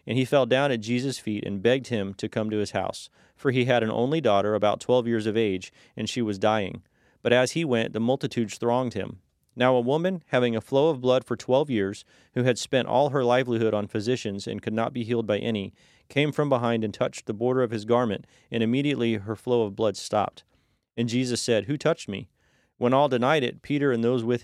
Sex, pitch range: male, 110-130 Hz